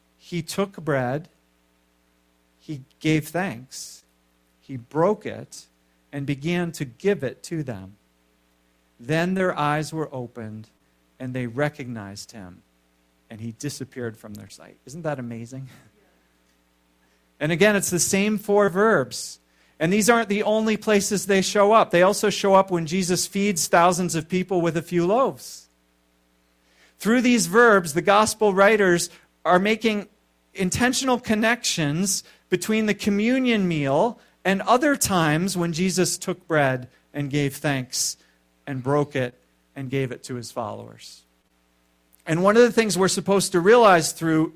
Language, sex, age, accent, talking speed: English, male, 40-59, American, 145 wpm